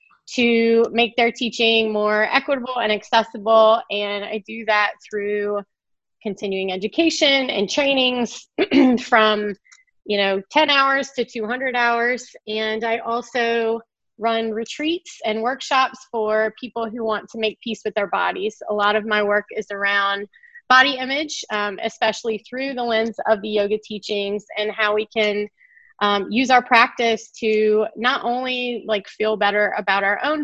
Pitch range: 210-250 Hz